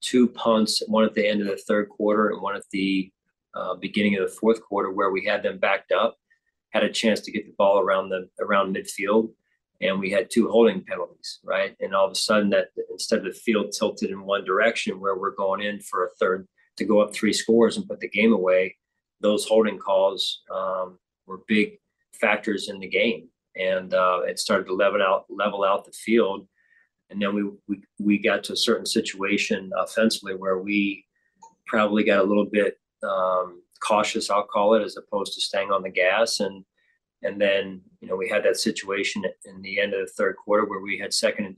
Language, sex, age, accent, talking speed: English, male, 40-59, American, 210 wpm